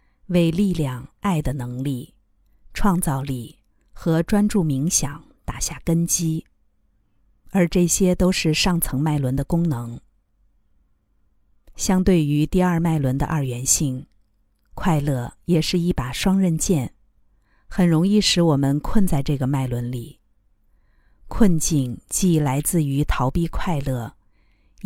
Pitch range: 125-175 Hz